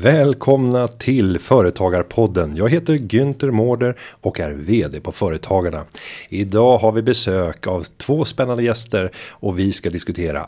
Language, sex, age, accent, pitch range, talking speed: Swedish, male, 30-49, native, 90-125 Hz, 135 wpm